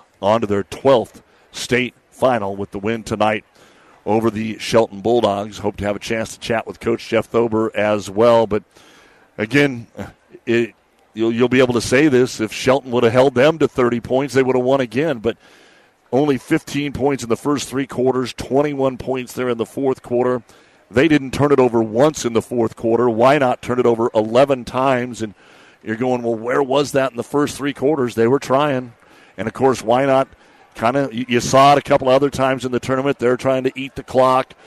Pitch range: 115-135 Hz